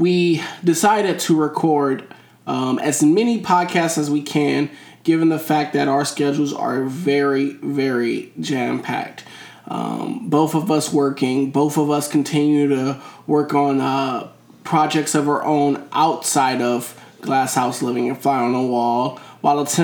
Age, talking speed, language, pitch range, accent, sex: 20-39, 145 wpm, English, 135-160 Hz, American, male